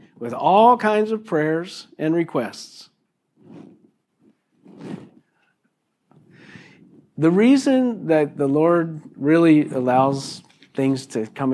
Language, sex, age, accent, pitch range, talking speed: English, male, 50-69, American, 145-205 Hz, 90 wpm